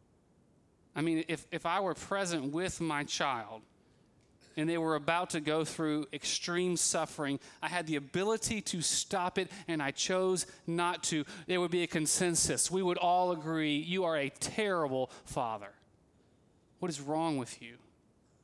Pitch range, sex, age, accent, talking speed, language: 135-180 Hz, male, 30-49, American, 165 wpm, English